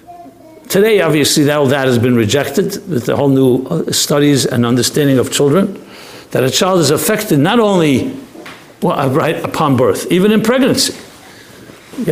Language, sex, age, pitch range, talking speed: English, male, 60-79, 145-215 Hz, 160 wpm